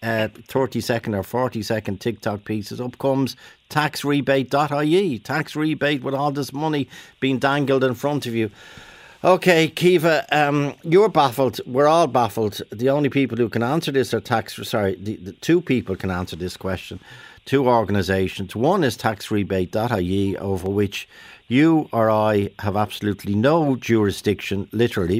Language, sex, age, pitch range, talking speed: English, male, 50-69, 105-145 Hz, 150 wpm